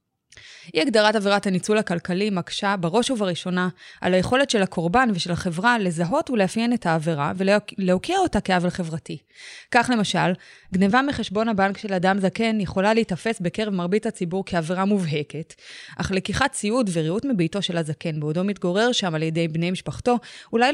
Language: Hebrew